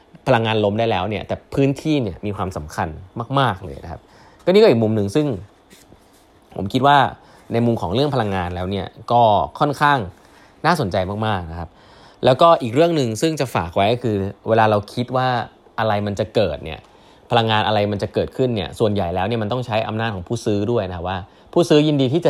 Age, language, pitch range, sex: 20-39, Thai, 100-135 Hz, male